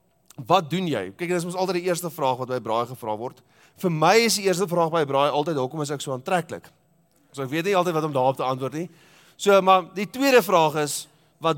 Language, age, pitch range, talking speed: English, 30-49, 150-195 Hz, 260 wpm